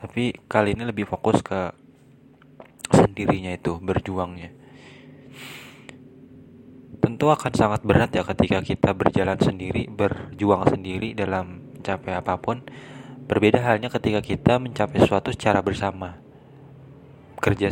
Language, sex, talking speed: Indonesian, male, 110 wpm